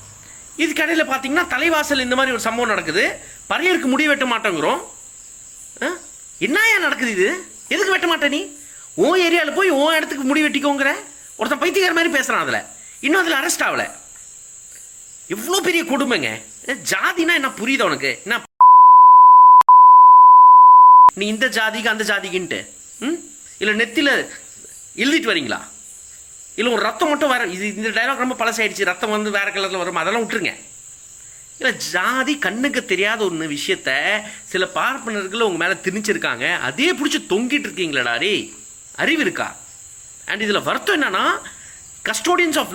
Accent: native